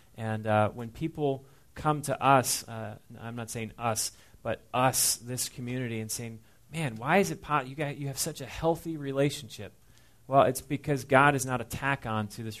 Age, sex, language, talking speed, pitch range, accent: 30-49, male, English, 195 wpm, 110-130 Hz, American